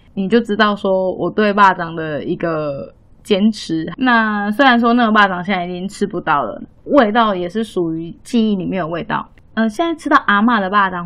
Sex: female